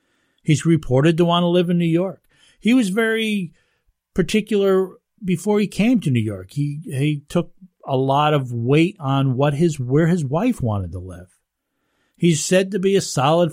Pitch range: 120-170 Hz